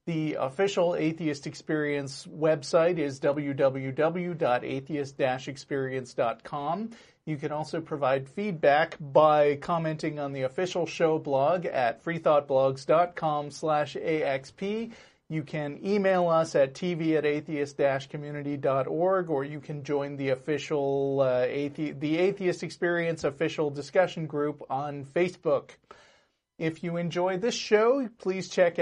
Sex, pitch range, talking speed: male, 145-175 Hz, 105 wpm